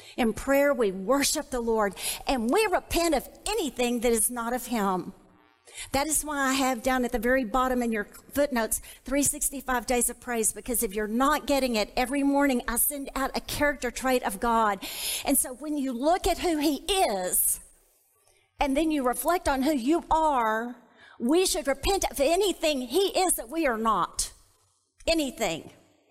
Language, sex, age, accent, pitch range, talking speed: English, female, 50-69, American, 230-290 Hz, 180 wpm